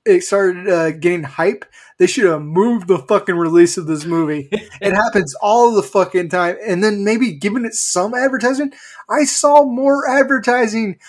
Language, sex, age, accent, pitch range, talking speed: English, male, 20-39, American, 175-255 Hz, 175 wpm